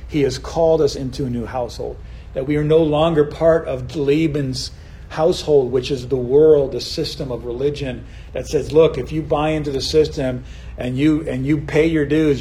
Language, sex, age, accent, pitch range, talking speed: English, male, 40-59, American, 125-155 Hz, 200 wpm